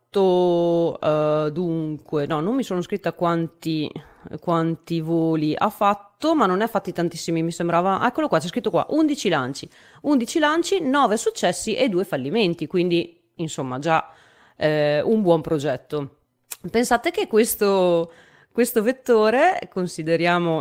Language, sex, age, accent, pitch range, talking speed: Italian, female, 30-49, native, 165-230 Hz, 135 wpm